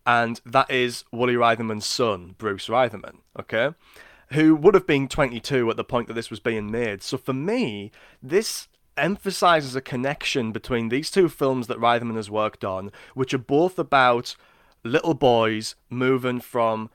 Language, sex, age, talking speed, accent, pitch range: English, male, 20-39, 165 wpm, British, 105-130 Hz